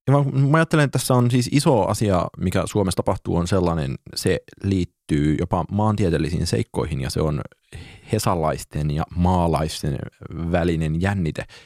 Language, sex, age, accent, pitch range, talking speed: Finnish, male, 30-49, native, 80-95 Hz, 140 wpm